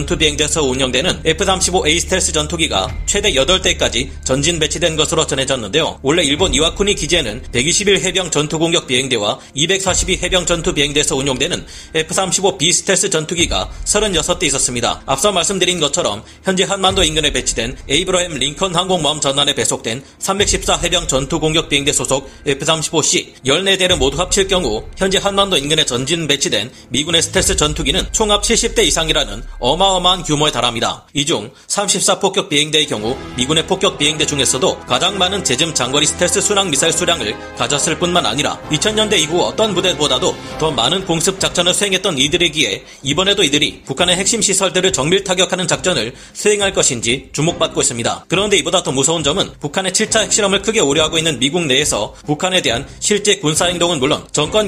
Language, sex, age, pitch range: Korean, male, 40-59, 145-190 Hz